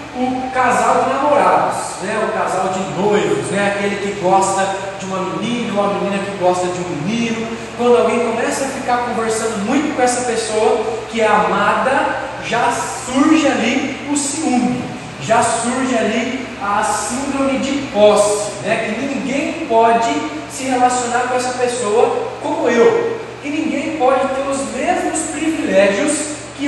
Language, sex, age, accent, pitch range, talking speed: Portuguese, male, 20-39, Brazilian, 215-270 Hz, 155 wpm